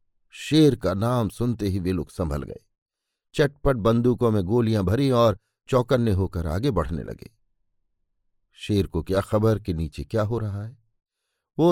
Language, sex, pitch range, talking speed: Hindi, male, 95-130 Hz, 160 wpm